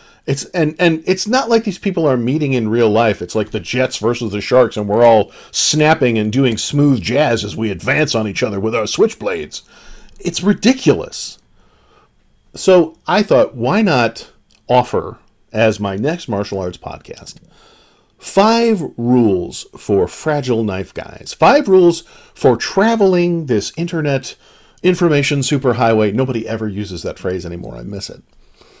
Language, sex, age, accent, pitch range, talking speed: English, male, 50-69, American, 110-170 Hz, 155 wpm